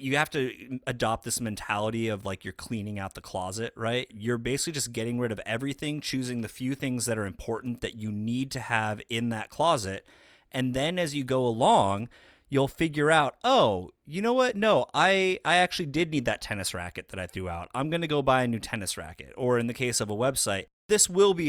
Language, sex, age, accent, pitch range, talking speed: English, male, 30-49, American, 100-130 Hz, 225 wpm